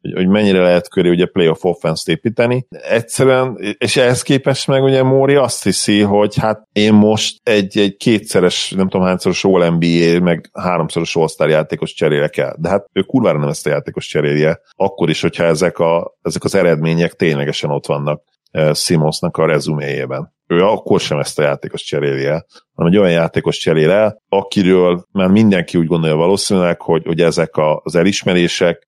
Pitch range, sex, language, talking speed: 85-105 Hz, male, Hungarian, 165 wpm